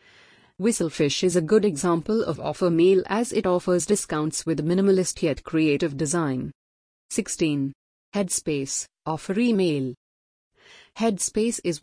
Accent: Indian